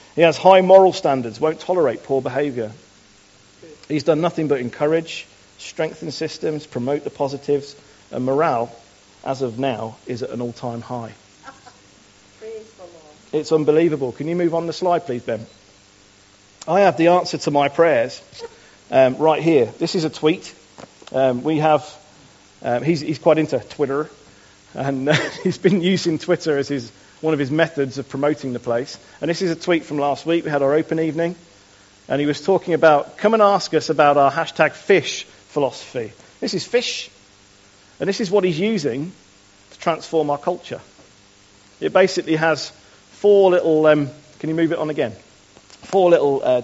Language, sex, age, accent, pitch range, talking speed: English, male, 40-59, British, 120-165 Hz, 170 wpm